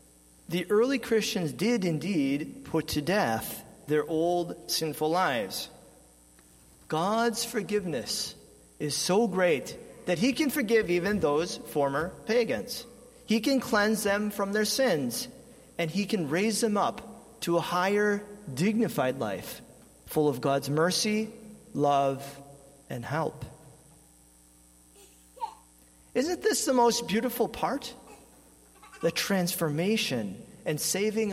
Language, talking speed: English, 115 wpm